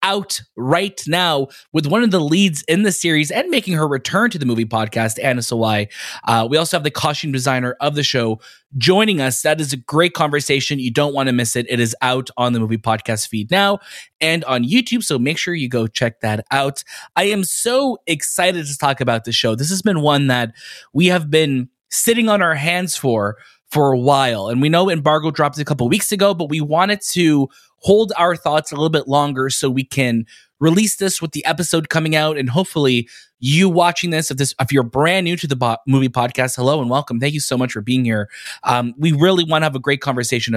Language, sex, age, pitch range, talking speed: English, male, 20-39, 125-170 Hz, 225 wpm